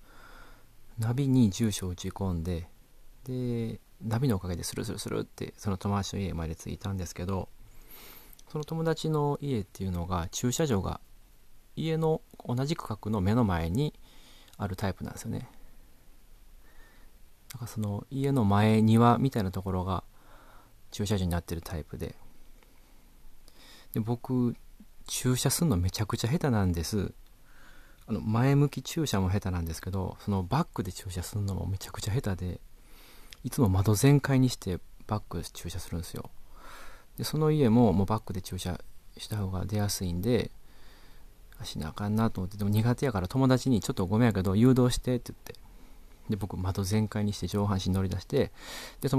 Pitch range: 95-125 Hz